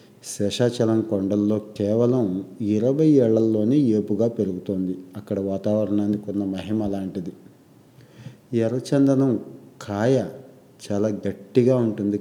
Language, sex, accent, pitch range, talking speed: Telugu, male, native, 100-115 Hz, 85 wpm